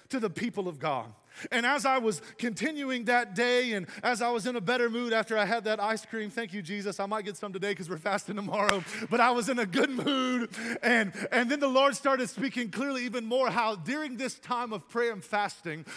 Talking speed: 235 wpm